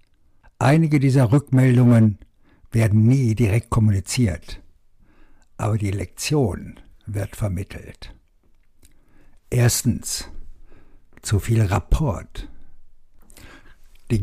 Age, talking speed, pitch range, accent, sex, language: 60-79, 70 wpm, 95-125 Hz, German, male, German